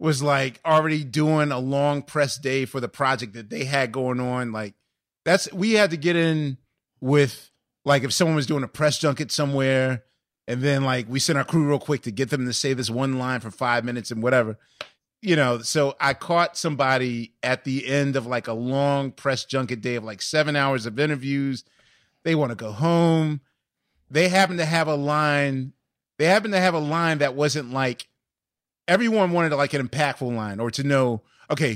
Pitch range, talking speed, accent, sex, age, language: 125-160 Hz, 200 wpm, American, male, 30-49, English